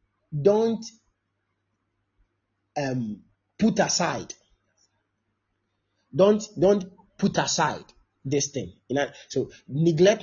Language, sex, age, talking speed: English, male, 30-49, 80 wpm